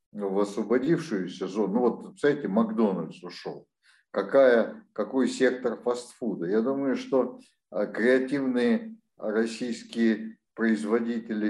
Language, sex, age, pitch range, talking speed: Russian, male, 50-69, 105-120 Hz, 95 wpm